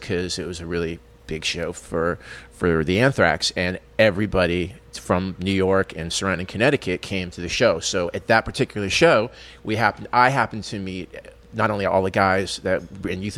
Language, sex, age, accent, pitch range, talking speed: English, male, 30-49, American, 90-105 Hz, 185 wpm